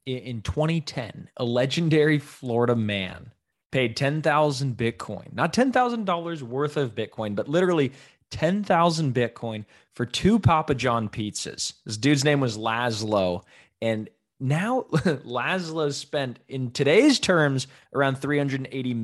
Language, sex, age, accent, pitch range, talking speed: English, male, 20-39, American, 120-155 Hz, 115 wpm